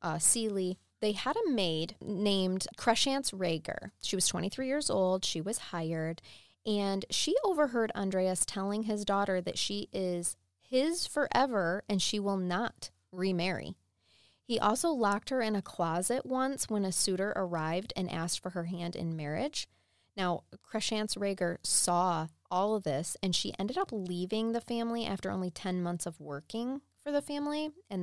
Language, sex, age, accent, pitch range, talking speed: English, female, 20-39, American, 165-210 Hz, 165 wpm